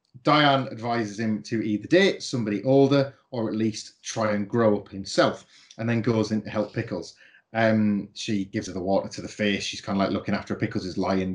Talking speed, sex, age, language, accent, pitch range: 215 wpm, male, 30-49, English, British, 105-135 Hz